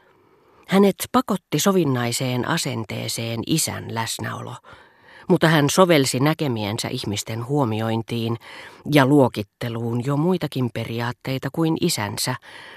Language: Finnish